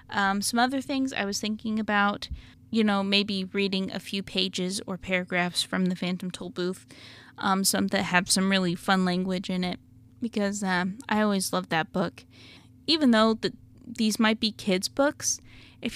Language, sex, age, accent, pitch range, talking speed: English, female, 20-39, American, 185-235 Hz, 175 wpm